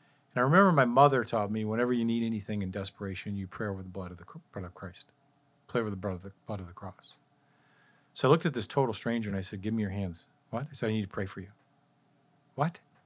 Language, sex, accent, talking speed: English, male, American, 260 wpm